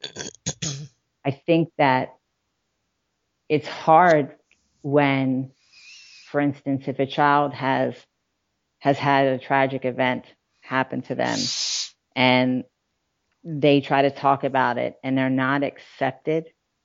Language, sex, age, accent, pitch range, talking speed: English, female, 40-59, American, 130-145 Hz, 110 wpm